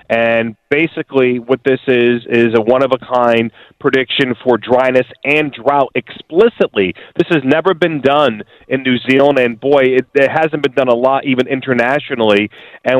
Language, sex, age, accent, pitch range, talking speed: English, male, 30-49, American, 120-140 Hz, 160 wpm